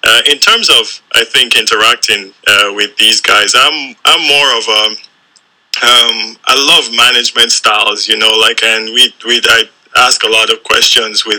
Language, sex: English, male